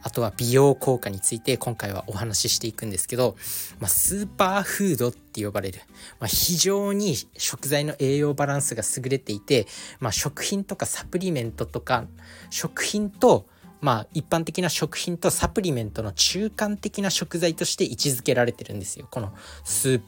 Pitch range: 110-170 Hz